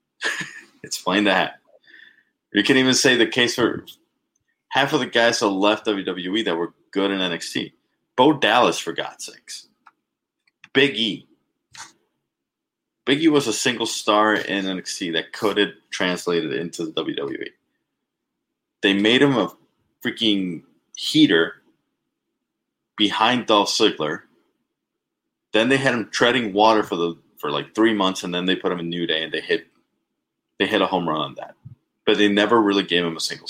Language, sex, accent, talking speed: English, male, American, 160 wpm